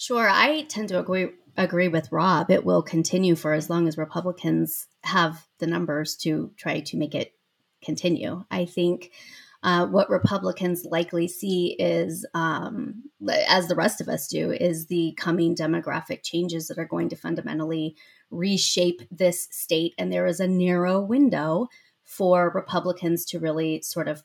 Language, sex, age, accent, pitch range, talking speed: English, female, 30-49, American, 165-185 Hz, 160 wpm